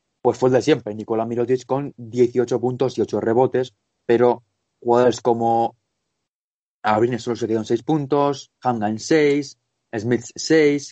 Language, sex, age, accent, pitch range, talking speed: Spanish, male, 20-39, Spanish, 110-125 Hz, 150 wpm